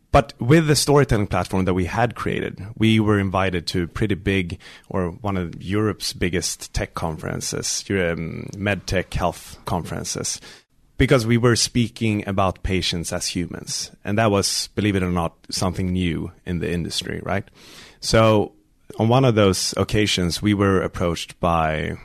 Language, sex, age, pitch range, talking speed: English, male, 30-49, 85-105 Hz, 160 wpm